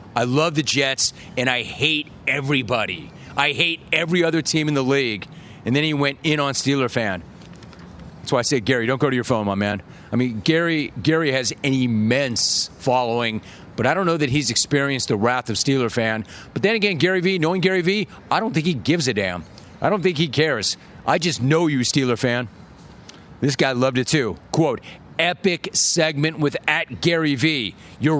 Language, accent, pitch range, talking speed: English, American, 125-165 Hz, 200 wpm